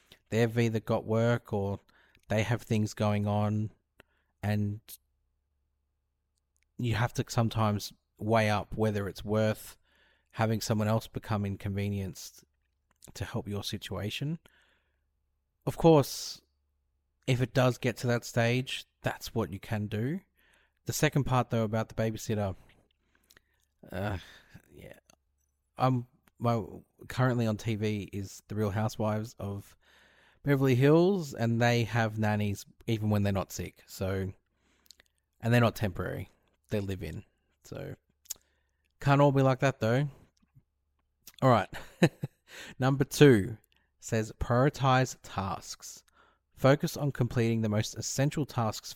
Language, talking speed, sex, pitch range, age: English, 125 wpm, male, 95-125 Hz, 30-49